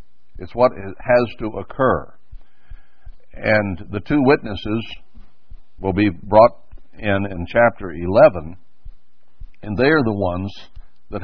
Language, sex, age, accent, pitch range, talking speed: English, male, 60-79, American, 90-115 Hz, 115 wpm